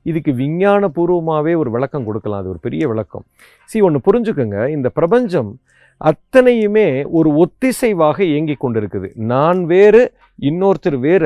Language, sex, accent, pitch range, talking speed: Tamil, male, native, 135-200 Hz, 125 wpm